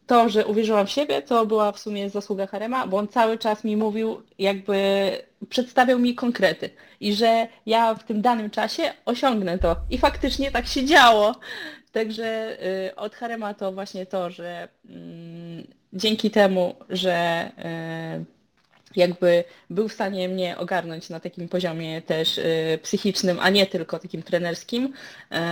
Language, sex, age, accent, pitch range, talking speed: Polish, female, 20-39, native, 175-215 Hz, 145 wpm